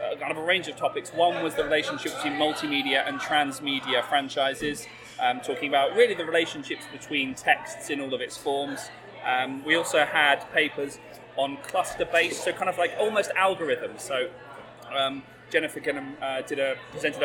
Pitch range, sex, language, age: 125-155 Hz, male, English, 20-39